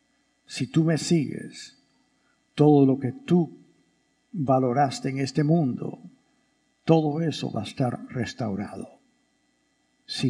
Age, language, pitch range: 60-79, English, 130-175 Hz